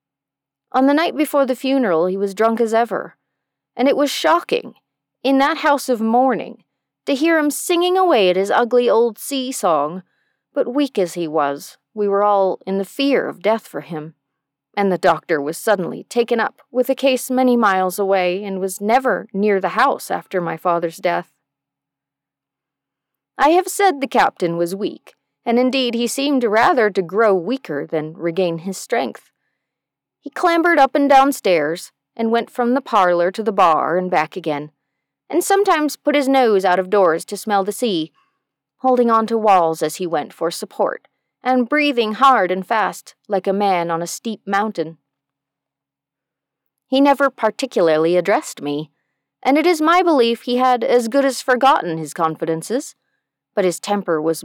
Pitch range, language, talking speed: 175-265 Hz, English, 175 wpm